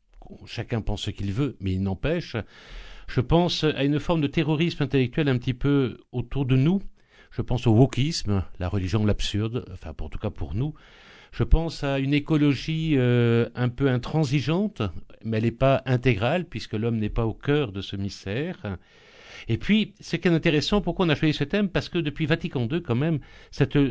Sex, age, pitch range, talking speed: male, 60-79, 110-155 Hz, 200 wpm